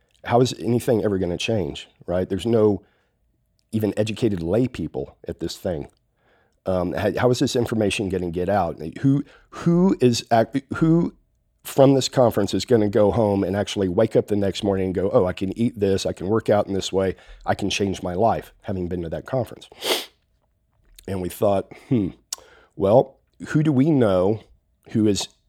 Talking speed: 190 wpm